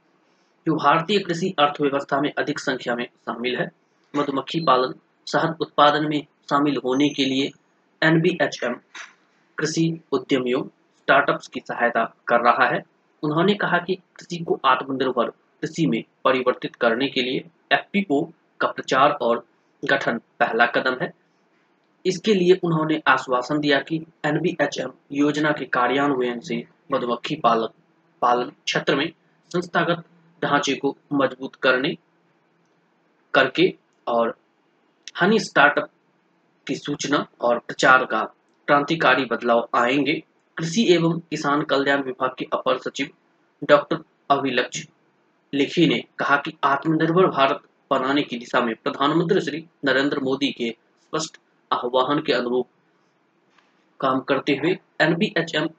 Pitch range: 130-160 Hz